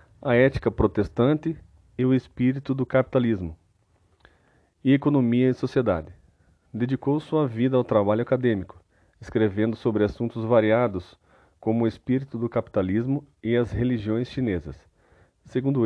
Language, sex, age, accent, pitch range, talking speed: Portuguese, male, 40-59, Brazilian, 105-130 Hz, 120 wpm